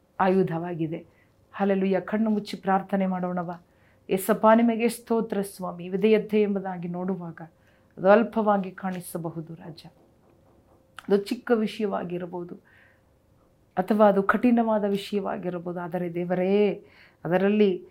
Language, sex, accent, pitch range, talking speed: Kannada, female, native, 170-205 Hz, 95 wpm